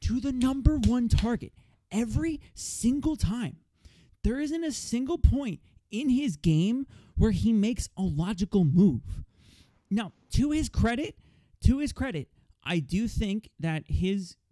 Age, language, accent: 30-49, English, American